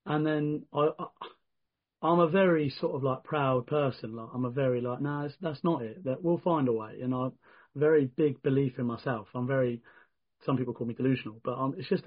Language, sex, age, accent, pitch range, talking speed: English, male, 30-49, British, 125-155 Hz, 240 wpm